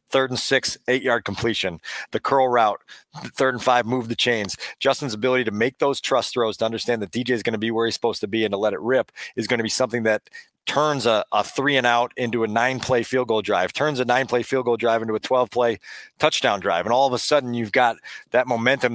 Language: English